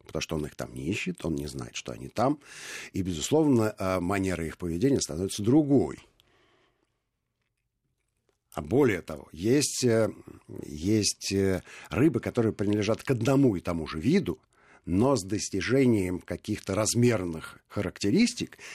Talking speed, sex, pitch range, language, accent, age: 130 wpm, male, 90-120 Hz, Russian, native, 60-79